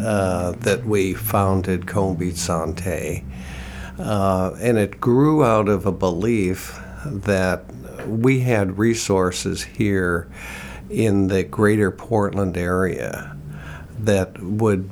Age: 60-79